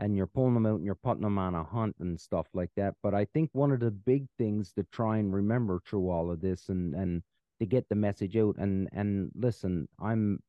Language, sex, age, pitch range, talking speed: English, male, 40-59, 90-110 Hz, 245 wpm